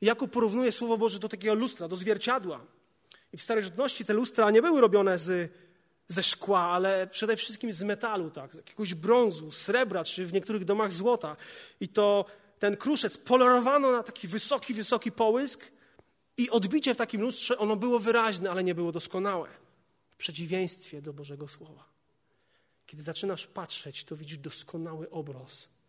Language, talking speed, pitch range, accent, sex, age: Polish, 160 wpm, 175-230 Hz, native, male, 30-49